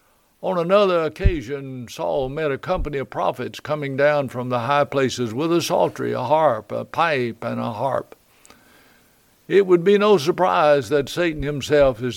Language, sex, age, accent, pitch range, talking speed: English, male, 60-79, American, 130-155 Hz, 170 wpm